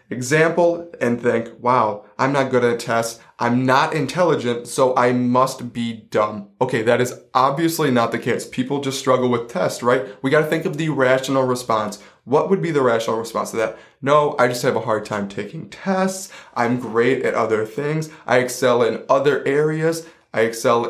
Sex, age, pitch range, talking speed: male, 20-39, 115-140 Hz, 190 wpm